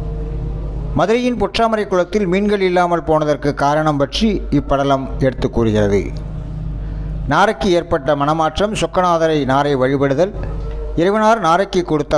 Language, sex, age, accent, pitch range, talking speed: Tamil, male, 60-79, native, 135-180 Hz, 100 wpm